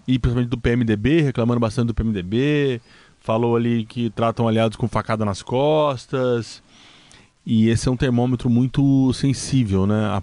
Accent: Brazilian